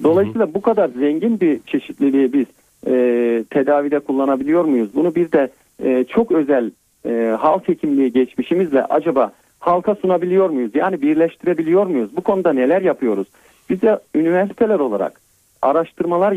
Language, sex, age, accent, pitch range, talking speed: Turkish, male, 50-69, native, 140-195 Hz, 135 wpm